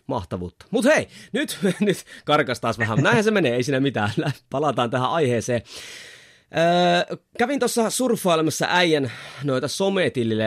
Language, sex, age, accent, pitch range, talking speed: Finnish, male, 30-49, native, 115-170 Hz, 130 wpm